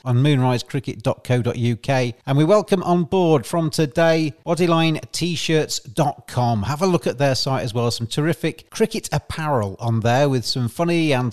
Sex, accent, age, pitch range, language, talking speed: male, British, 40-59, 120-165 Hz, English, 150 wpm